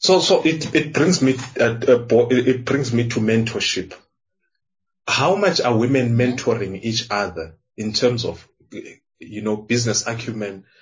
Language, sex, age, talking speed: English, male, 30-49, 145 wpm